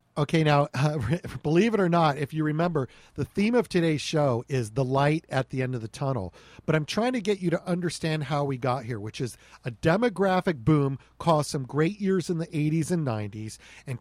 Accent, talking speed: American, 220 wpm